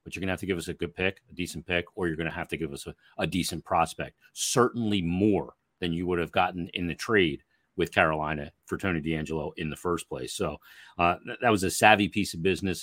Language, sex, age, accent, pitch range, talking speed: English, male, 40-59, American, 90-110 Hz, 255 wpm